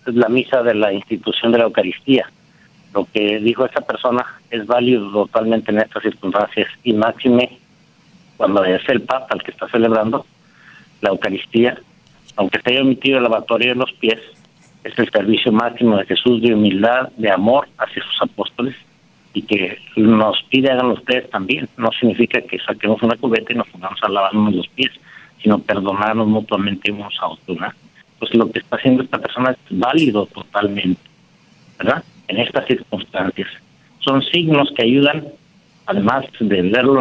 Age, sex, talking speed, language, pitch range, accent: 50-69, male, 165 wpm, Spanish, 105-125 Hz, Mexican